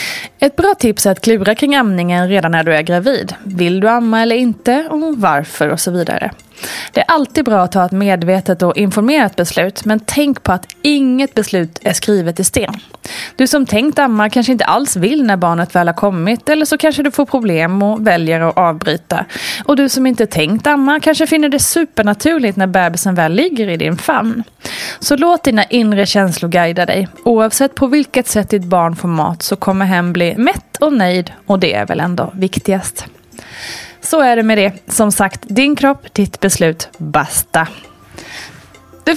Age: 20-39